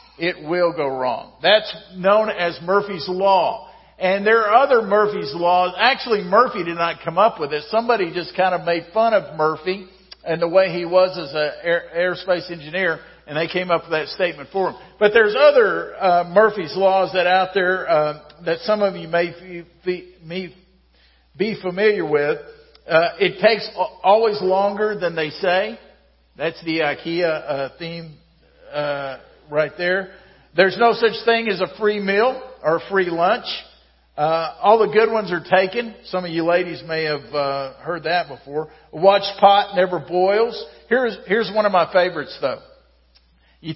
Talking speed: 175 wpm